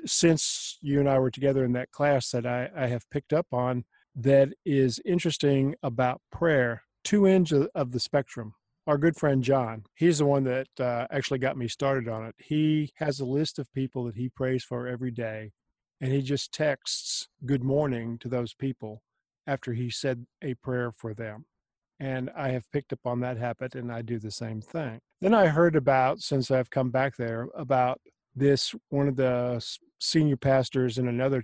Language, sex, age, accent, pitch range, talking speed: English, male, 50-69, American, 125-140 Hz, 195 wpm